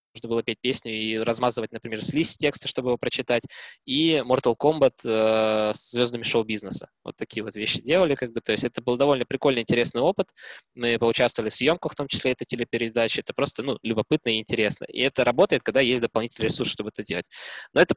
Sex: male